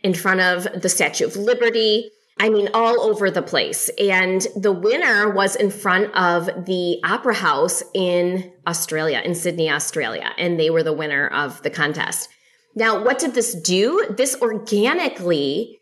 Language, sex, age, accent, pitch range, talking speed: English, female, 20-39, American, 170-230 Hz, 165 wpm